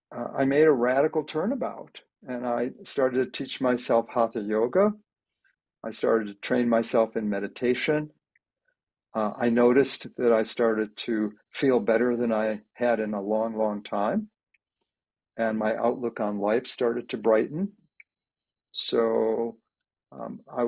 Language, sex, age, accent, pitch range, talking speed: English, male, 50-69, American, 110-125 Hz, 140 wpm